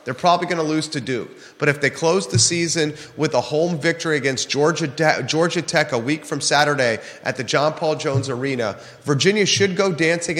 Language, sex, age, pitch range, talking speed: English, male, 30-49, 140-175 Hz, 210 wpm